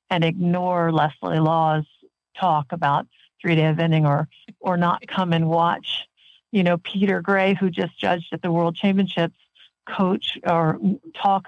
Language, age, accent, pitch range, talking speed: English, 50-69, American, 165-200 Hz, 145 wpm